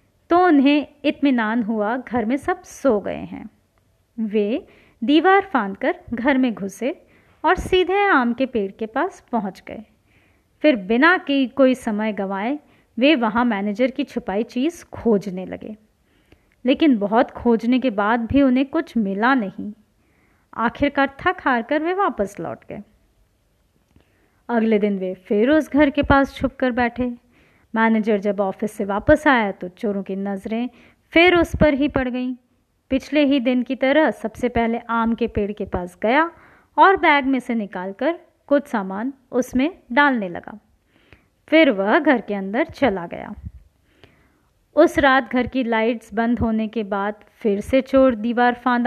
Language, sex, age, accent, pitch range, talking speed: Hindi, female, 20-39, native, 215-285 Hz, 155 wpm